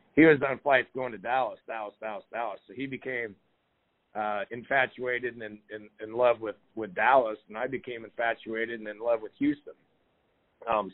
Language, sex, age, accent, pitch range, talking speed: English, male, 40-59, American, 110-125 Hz, 175 wpm